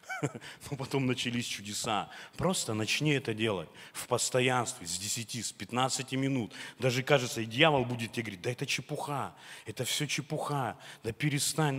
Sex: male